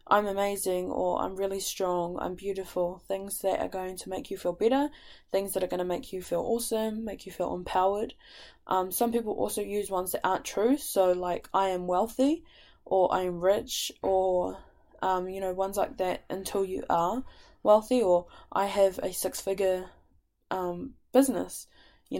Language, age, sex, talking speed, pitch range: English, 10-29, female, 180 wpm, 185-220 Hz